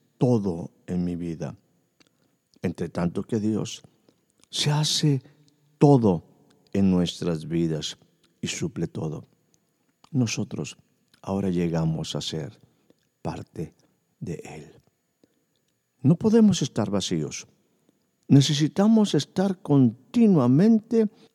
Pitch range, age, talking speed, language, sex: 95-155 Hz, 50-69, 90 wpm, Spanish, male